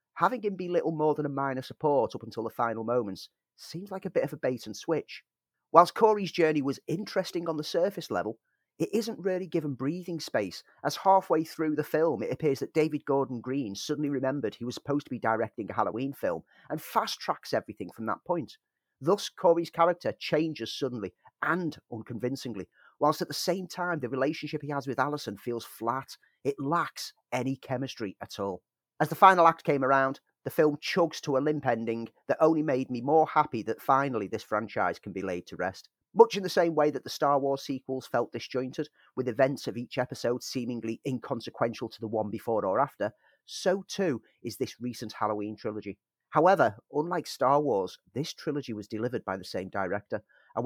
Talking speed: 195 wpm